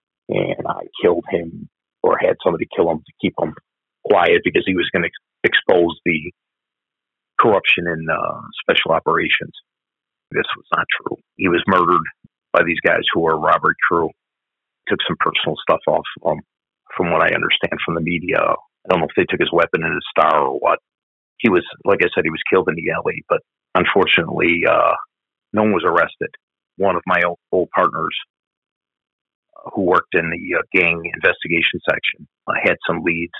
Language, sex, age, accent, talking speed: English, male, 40-59, American, 185 wpm